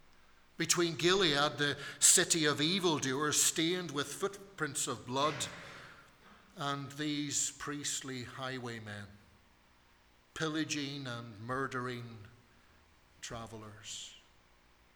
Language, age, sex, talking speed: English, 50-69, male, 75 wpm